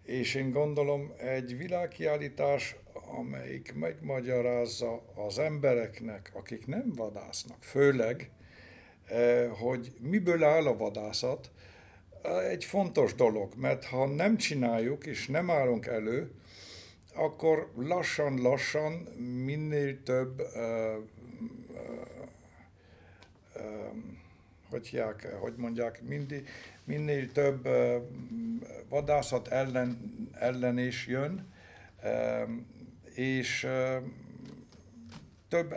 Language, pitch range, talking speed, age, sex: Hungarian, 110-145 Hz, 90 wpm, 60-79, male